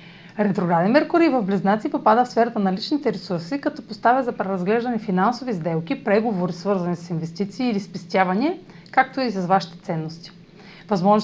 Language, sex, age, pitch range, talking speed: Bulgarian, female, 30-49, 180-230 Hz, 150 wpm